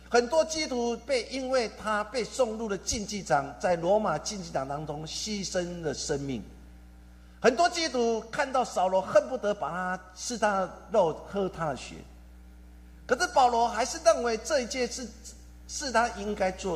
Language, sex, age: Chinese, male, 50-69